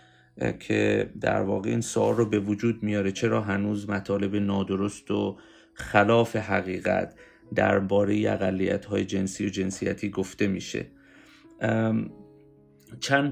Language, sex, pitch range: English, male, 100-115 Hz